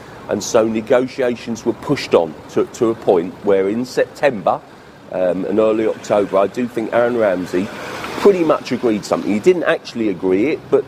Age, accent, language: 40-59, British, English